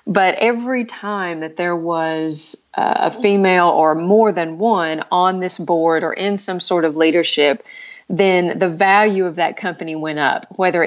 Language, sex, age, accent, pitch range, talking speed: English, female, 40-59, American, 160-200 Hz, 165 wpm